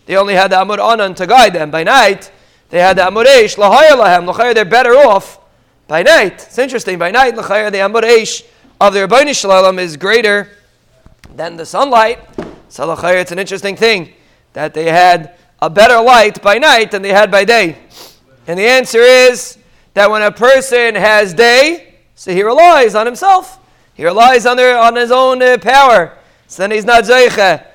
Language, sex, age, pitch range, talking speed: English, male, 30-49, 210-270 Hz, 180 wpm